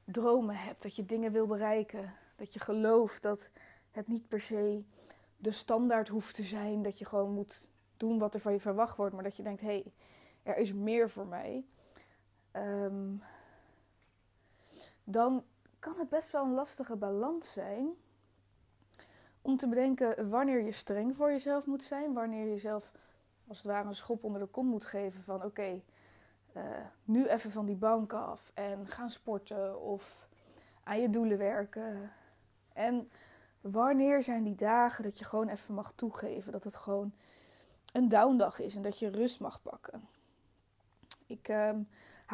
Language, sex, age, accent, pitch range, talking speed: Dutch, female, 20-39, Dutch, 200-230 Hz, 165 wpm